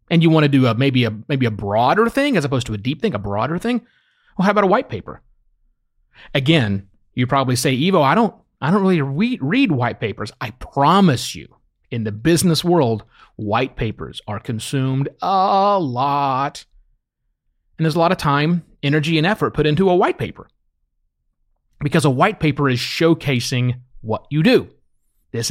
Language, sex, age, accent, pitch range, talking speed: English, male, 30-49, American, 125-195 Hz, 185 wpm